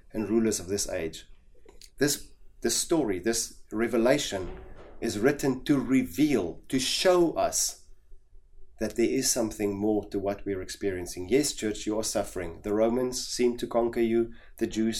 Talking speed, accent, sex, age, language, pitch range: 155 wpm, German, male, 30-49, English, 105-130 Hz